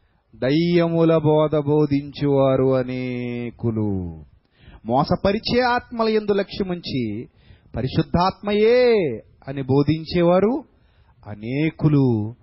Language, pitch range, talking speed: Telugu, 110-170 Hz, 60 wpm